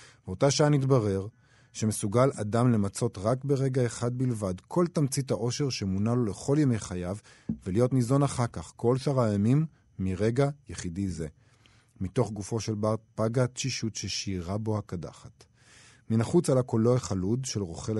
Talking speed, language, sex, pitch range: 145 wpm, Hebrew, male, 95-125 Hz